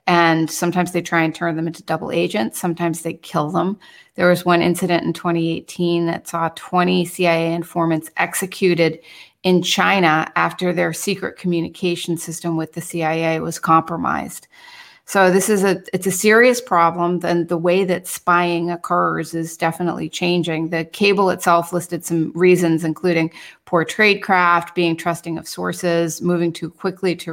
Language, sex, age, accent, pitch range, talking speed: English, female, 30-49, American, 170-190 Hz, 160 wpm